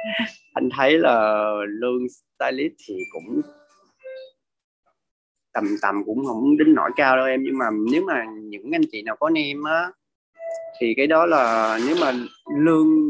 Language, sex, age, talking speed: Vietnamese, male, 20-39, 155 wpm